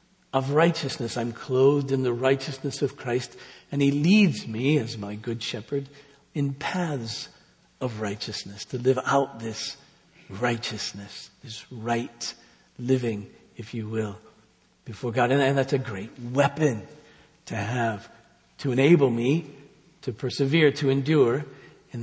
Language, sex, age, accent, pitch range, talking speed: English, male, 60-79, American, 130-170 Hz, 135 wpm